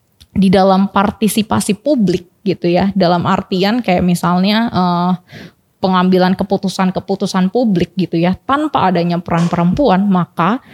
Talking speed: 115 wpm